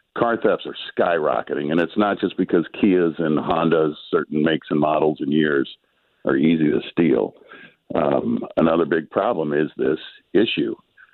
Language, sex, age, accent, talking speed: English, male, 60-79, American, 155 wpm